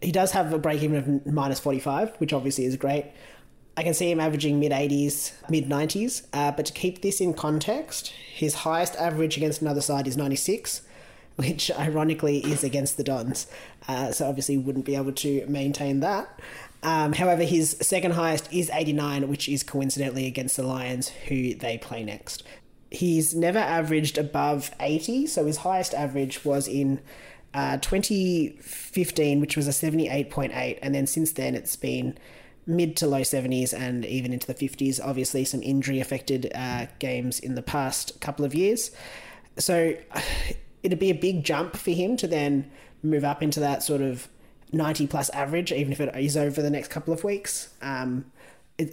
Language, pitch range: English, 135-160 Hz